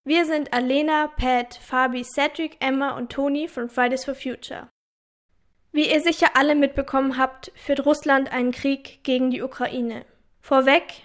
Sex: female